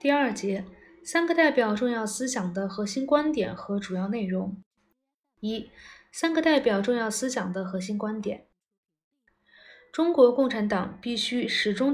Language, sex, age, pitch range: Chinese, female, 20-39, 205-265 Hz